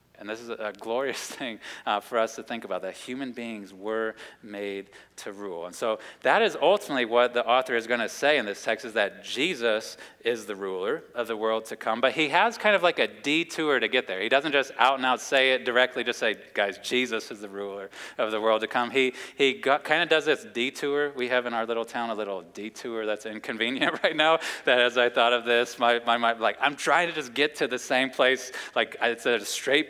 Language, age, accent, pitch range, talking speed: English, 30-49, American, 110-130 Hz, 240 wpm